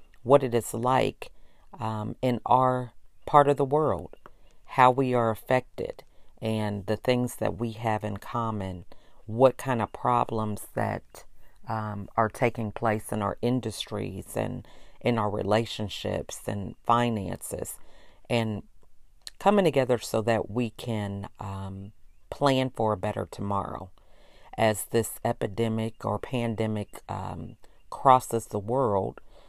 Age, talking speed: 40-59, 130 wpm